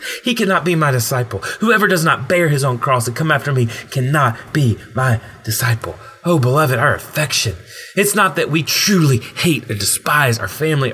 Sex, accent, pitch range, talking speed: male, American, 120-170 Hz, 185 wpm